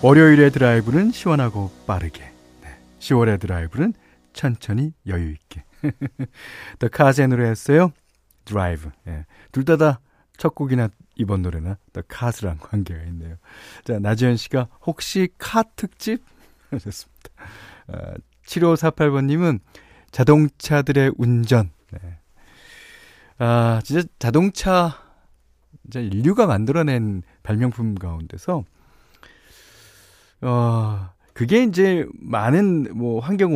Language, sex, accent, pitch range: Korean, male, native, 95-155 Hz